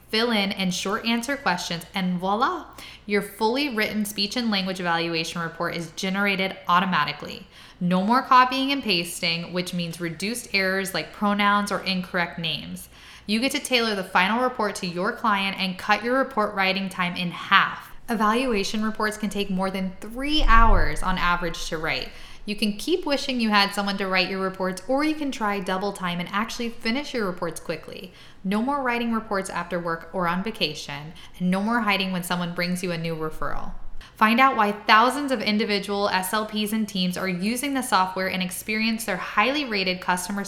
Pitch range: 180-225 Hz